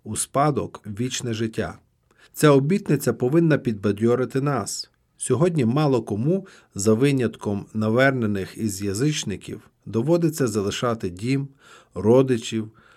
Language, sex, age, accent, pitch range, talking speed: Ukrainian, male, 40-59, native, 110-145 Hz, 100 wpm